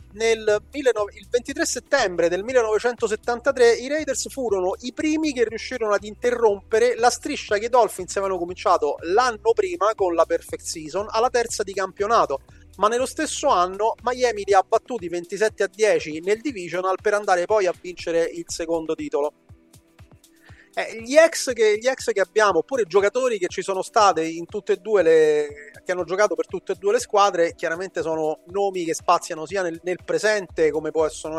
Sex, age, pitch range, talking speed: male, 30-49, 170-245 Hz, 175 wpm